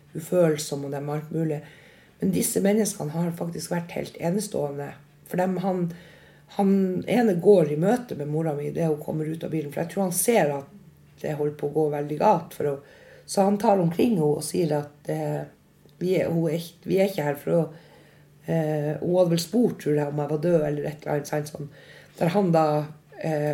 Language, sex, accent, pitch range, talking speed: English, female, Swedish, 150-180 Hz, 185 wpm